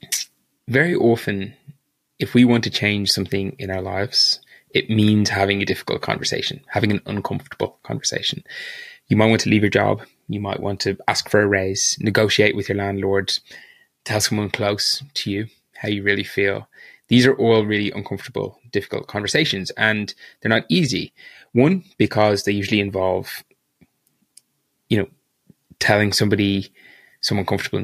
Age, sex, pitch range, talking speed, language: 20-39, male, 100-120 Hz, 155 wpm, English